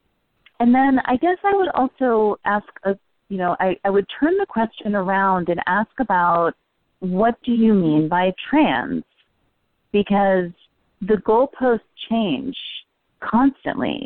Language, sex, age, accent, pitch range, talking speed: English, female, 30-49, American, 170-215 Hz, 130 wpm